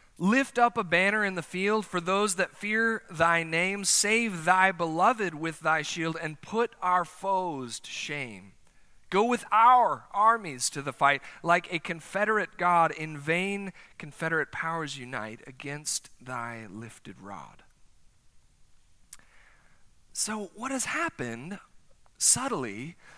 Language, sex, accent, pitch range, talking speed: English, male, American, 160-215 Hz, 130 wpm